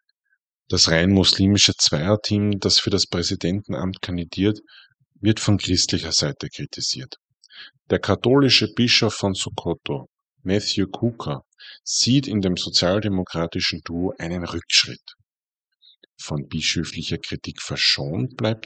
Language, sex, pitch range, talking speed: German, male, 85-110 Hz, 105 wpm